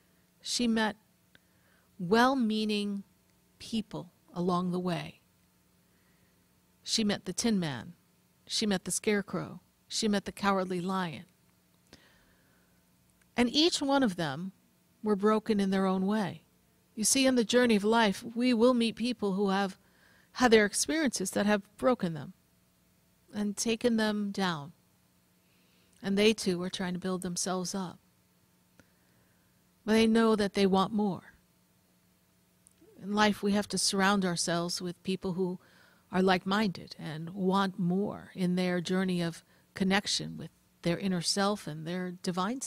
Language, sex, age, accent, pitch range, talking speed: English, female, 50-69, American, 180-215 Hz, 140 wpm